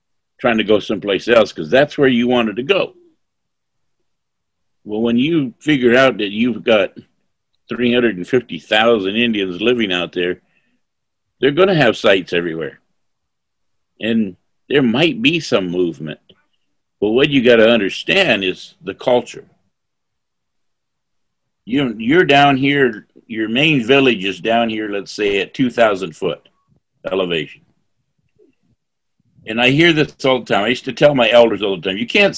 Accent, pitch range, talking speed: American, 115-175 Hz, 150 wpm